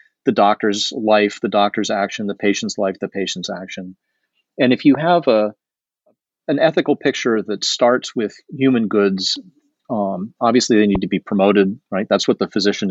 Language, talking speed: English, 170 wpm